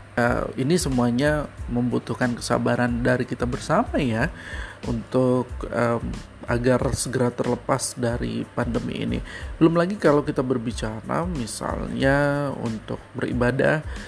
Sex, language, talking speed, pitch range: male, Indonesian, 105 wpm, 115-145 Hz